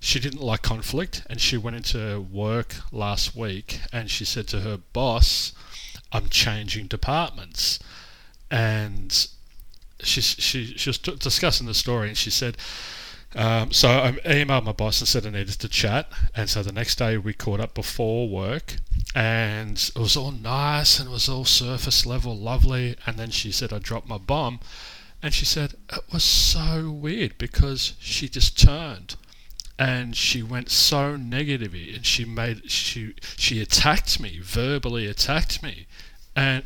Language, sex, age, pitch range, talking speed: English, male, 30-49, 105-130 Hz, 165 wpm